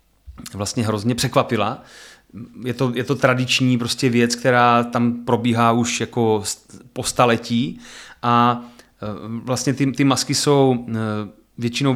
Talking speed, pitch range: 120 wpm, 120-135 Hz